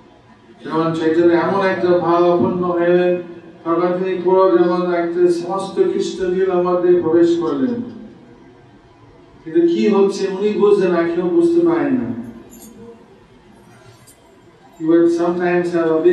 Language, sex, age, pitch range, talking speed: English, male, 50-69, 160-180 Hz, 40 wpm